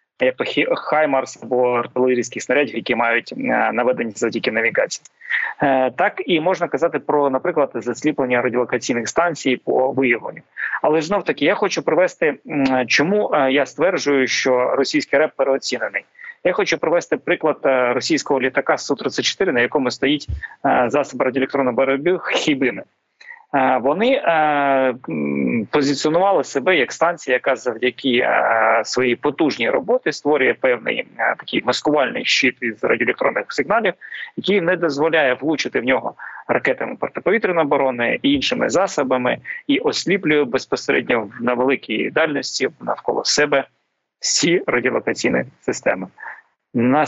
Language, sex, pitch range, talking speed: Ukrainian, male, 130-195 Hz, 120 wpm